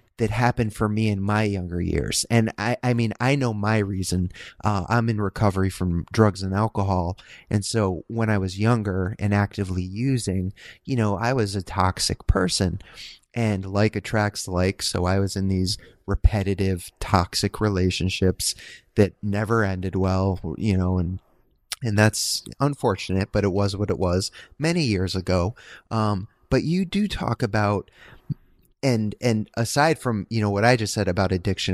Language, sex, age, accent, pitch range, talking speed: English, male, 30-49, American, 95-120 Hz, 170 wpm